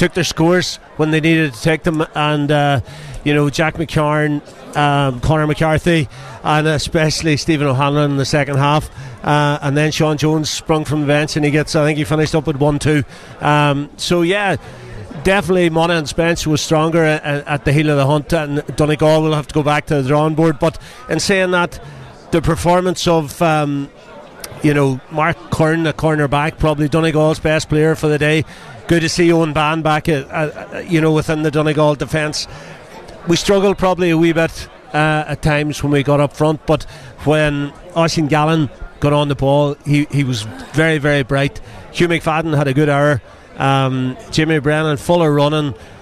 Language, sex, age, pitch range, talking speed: English, male, 40-59, 145-160 Hz, 195 wpm